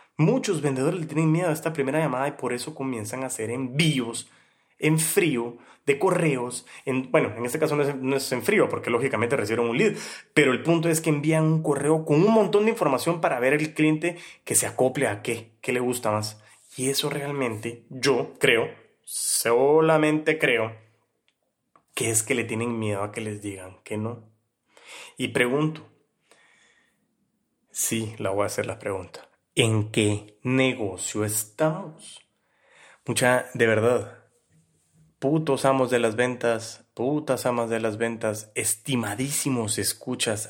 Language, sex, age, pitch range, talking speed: Spanish, male, 30-49, 115-150 Hz, 160 wpm